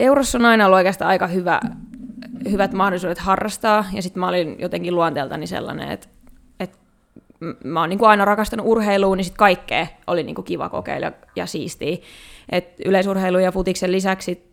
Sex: female